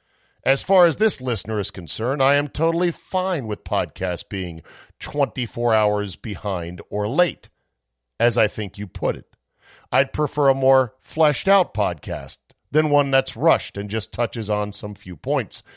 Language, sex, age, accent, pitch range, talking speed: English, male, 50-69, American, 90-140 Hz, 160 wpm